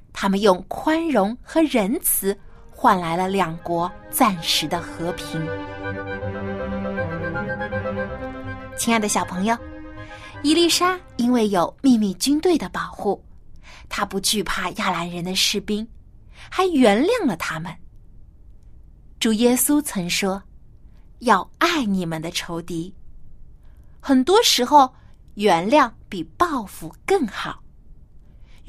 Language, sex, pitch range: Chinese, female, 175-290 Hz